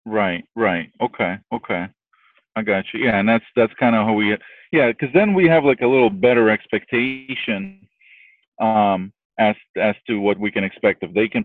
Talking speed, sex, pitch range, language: 190 wpm, male, 100-120 Hz, English